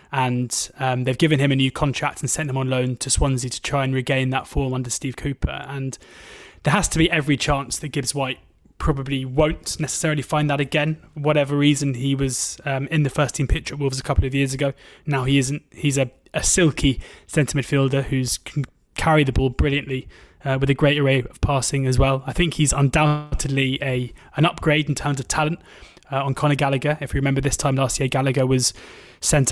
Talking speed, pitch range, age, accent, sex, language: 215 wpm, 130-150 Hz, 20-39, British, male, English